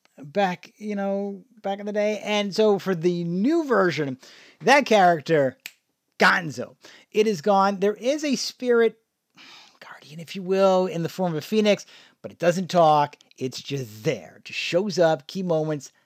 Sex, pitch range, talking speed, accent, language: male, 160-215 Hz, 170 wpm, American, English